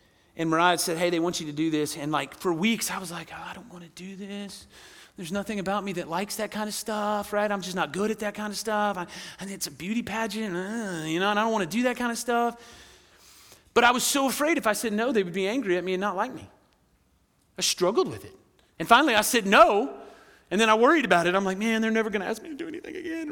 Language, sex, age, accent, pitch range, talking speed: English, male, 30-49, American, 165-220 Hz, 280 wpm